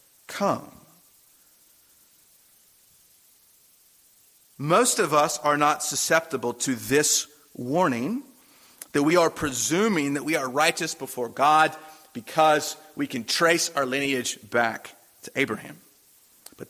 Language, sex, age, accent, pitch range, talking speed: English, male, 40-59, American, 130-185 Hz, 110 wpm